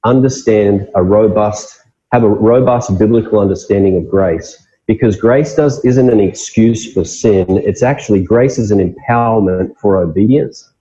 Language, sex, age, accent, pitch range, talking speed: English, male, 30-49, Australian, 95-120 Hz, 145 wpm